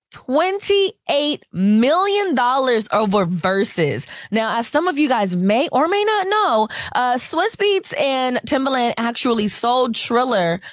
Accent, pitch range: American, 195-270 Hz